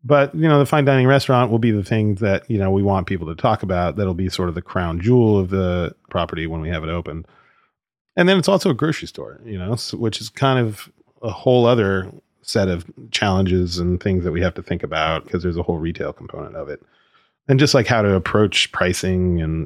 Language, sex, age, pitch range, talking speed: English, male, 30-49, 90-115 Hz, 240 wpm